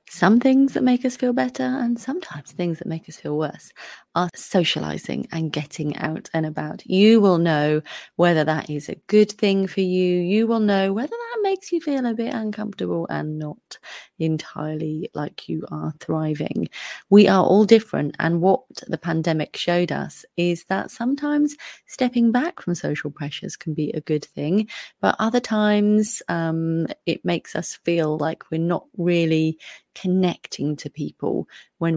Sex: female